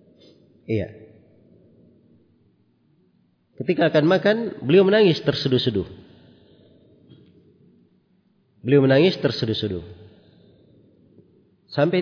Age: 40-59